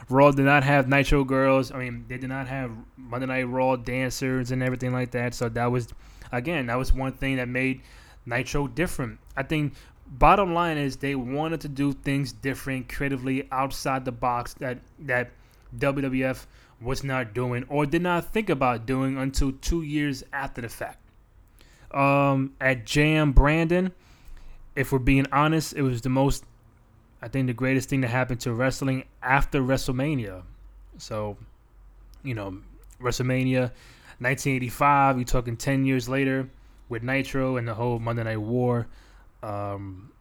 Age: 20-39